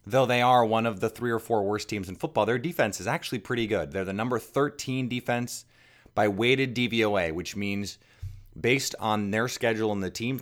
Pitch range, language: 100-120 Hz, English